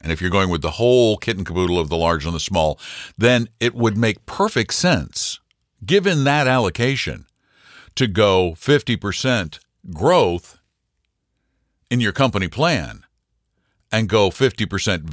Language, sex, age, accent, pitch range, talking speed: English, male, 60-79, American, 85-115 Hz, 145 wpm